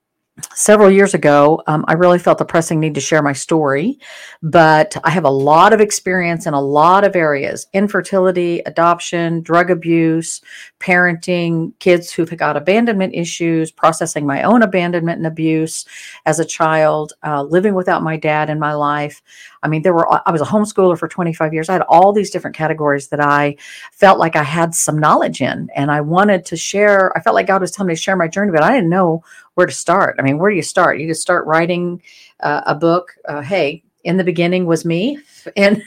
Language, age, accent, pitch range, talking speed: English, 50-69, American, 155-190 Hz, 205 wpm